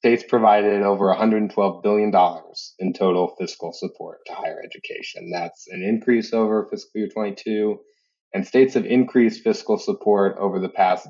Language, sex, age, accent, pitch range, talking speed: English, male, 20-39, American, 95-125 Hz, 150 wpm